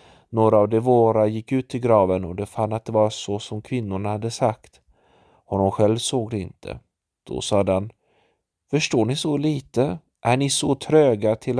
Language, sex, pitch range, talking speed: Swedish, male, 105-125 Hz, 185 wpm